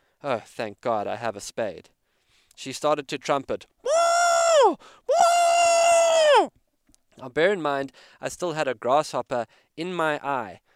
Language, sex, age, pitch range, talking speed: English, male, 20-39, 120-155 Hz, 130 wpm